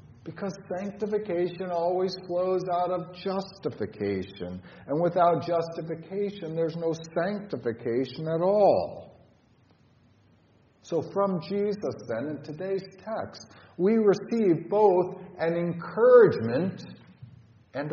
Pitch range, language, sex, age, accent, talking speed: 120-185 Hz, English, male, 50-69, American, 95 wpm